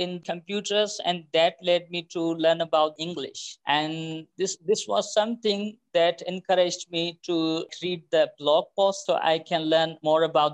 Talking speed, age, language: 165 wpm, 50-69, English